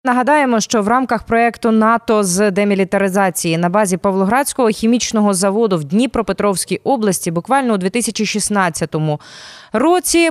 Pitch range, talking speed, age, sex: 195-250 Hz, 115 wpm, 20-39, female